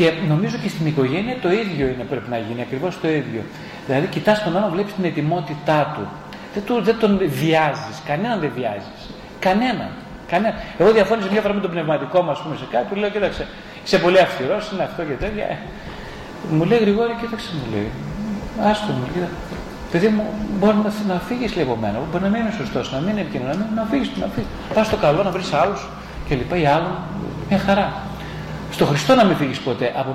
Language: Greek